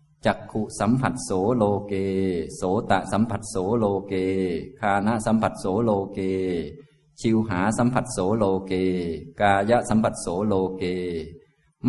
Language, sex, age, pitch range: Thai, male, 20-39, 90-115 Hz